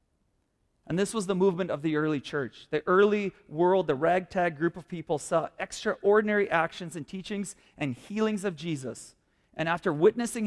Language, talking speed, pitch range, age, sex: English, 165 wpm, 150-195 Hz, 40-59, male